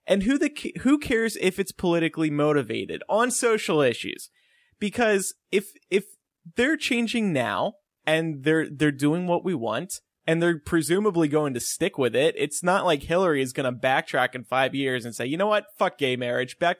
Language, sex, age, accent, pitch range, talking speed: English, male, 20-39, American, 135-215 Hz, 190 wpm